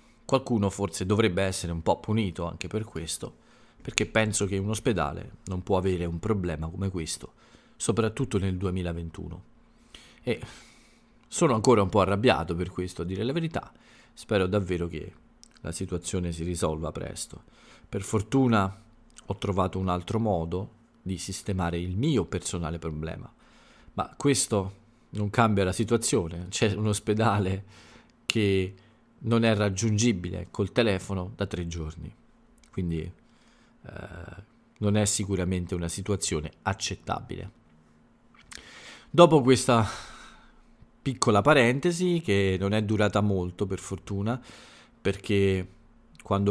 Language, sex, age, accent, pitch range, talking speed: Italian, male, 40-59, native, 90-110 Hz, 125 wpm